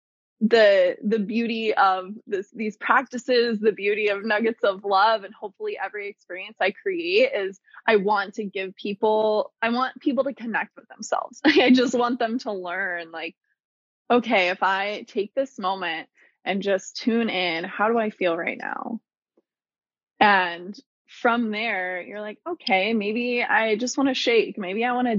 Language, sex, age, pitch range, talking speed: English, female, 20-39, 195-235 Hz, 170 wpm